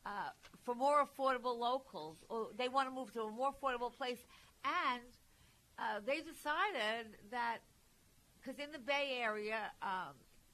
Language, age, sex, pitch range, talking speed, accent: English, 50-69, female, 195-260 Hz, 150 wpm, American